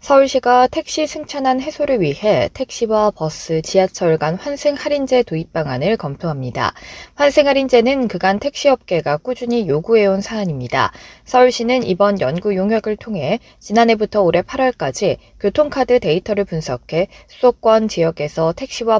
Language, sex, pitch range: Korean, female, 170-255 Hz